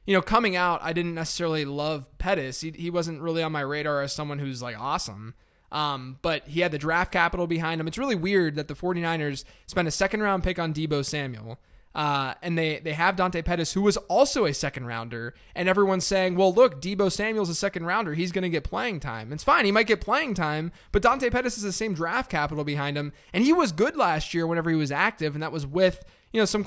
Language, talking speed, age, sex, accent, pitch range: English, 235 wpm, 20-39, male, American, 150-195 Hz